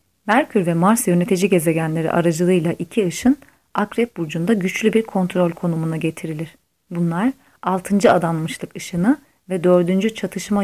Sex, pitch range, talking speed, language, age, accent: female, 170-210 Hz, 125 wpm, Turkish, 30-49, native